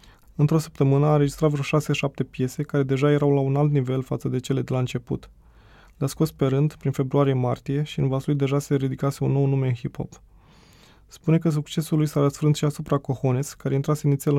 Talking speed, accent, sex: 210 wpm, native, male